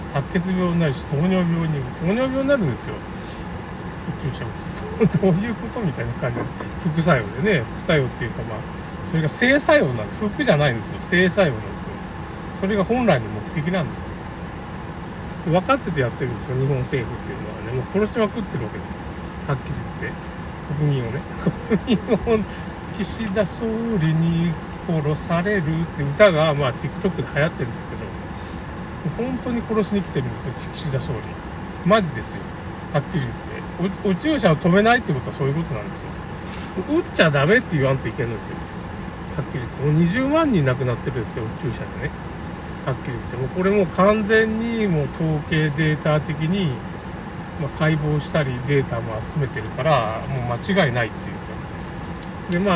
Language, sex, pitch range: Japanese, male, 135-195 Hz